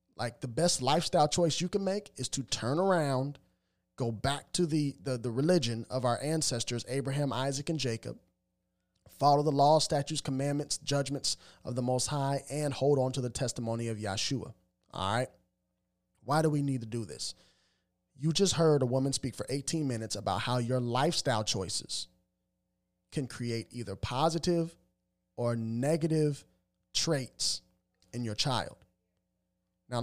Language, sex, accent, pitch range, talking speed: English, male, American, 110-150 Hz, 155 wpm